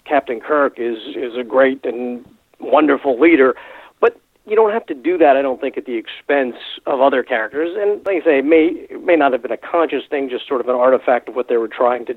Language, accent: English, American